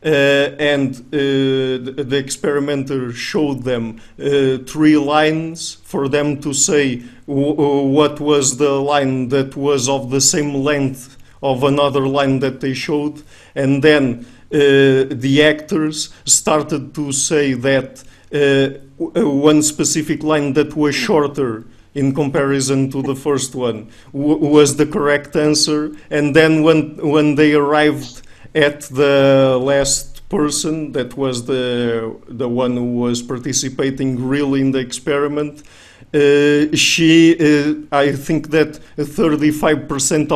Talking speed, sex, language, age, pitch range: 125 wpm, male, English, 50-69, 135-150 Hz